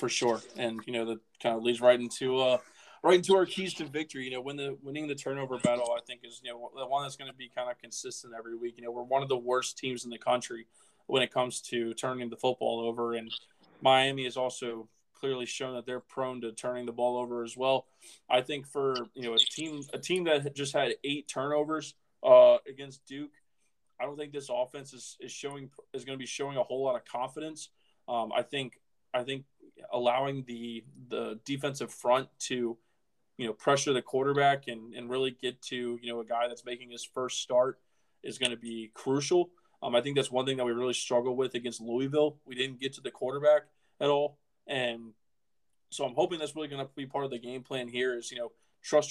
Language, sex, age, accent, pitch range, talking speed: English, male, 20-39, American, 120-140 Hz, 225 wpm